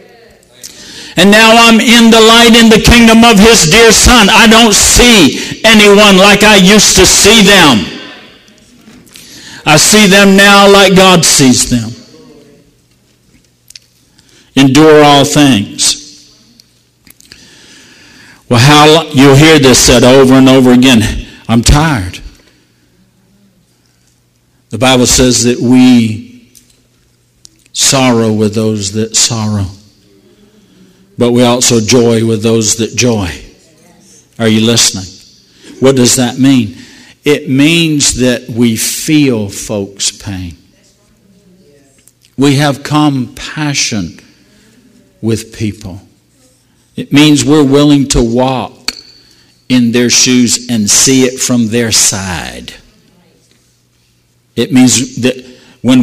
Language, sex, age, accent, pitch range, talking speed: English, male, 60-79, American, 110-150 Hz, 110 wpm